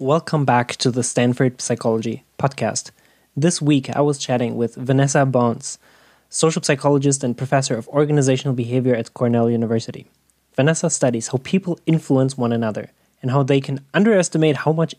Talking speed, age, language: 155 wpm, 20-39, English